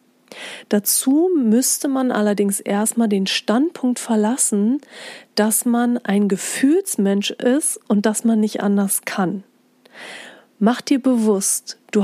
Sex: female